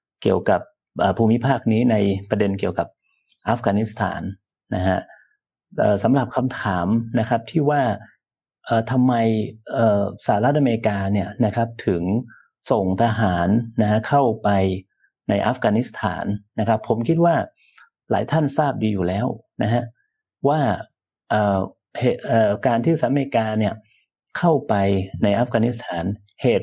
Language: Thai